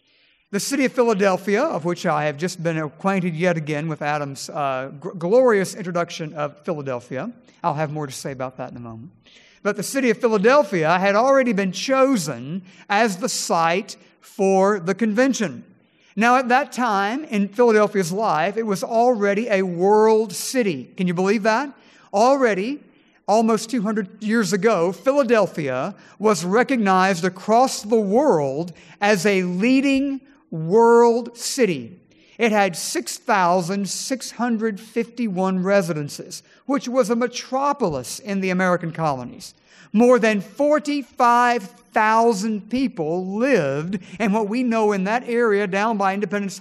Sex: male